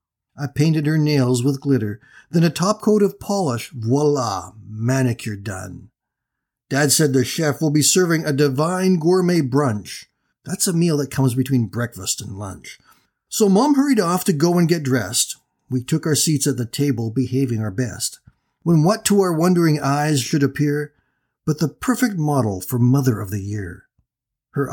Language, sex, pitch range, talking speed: English, male, 120-165 Hz, 175 wpm